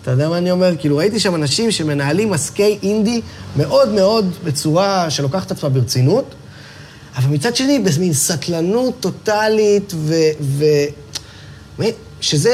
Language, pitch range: Hebrew, 130-175 Hz